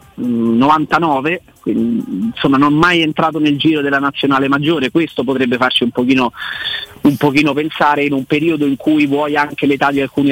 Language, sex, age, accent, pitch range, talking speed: Italian, male, 30-49, native, 130-155 Hz, 165 wpm